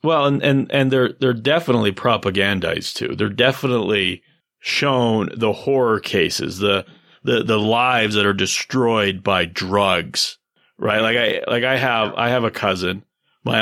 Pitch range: 100-130 Hz